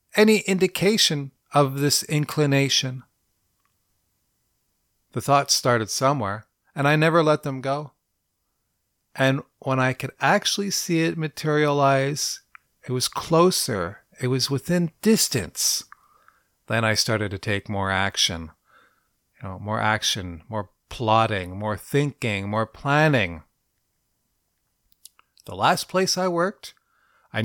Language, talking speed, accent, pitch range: English, 115 wpm, American, 105-165 Hz